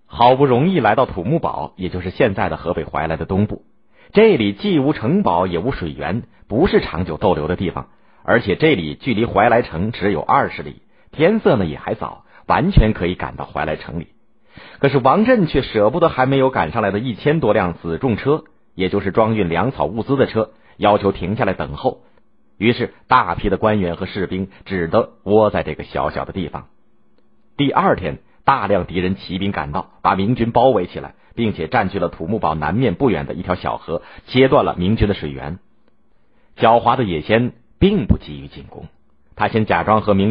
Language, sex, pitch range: Chinese, male, 80-115 Hz